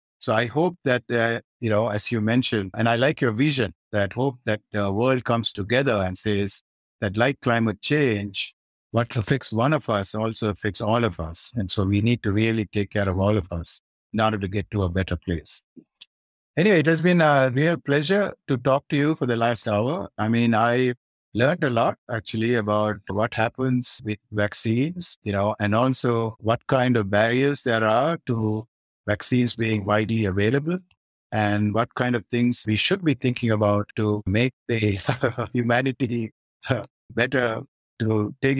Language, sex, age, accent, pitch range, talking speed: English, male, 60-79, Indian, 105-130 Hz, 180 wpm